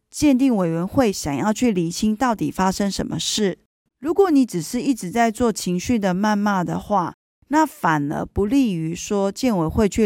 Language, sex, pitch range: Chinese, female, 180-235 Hz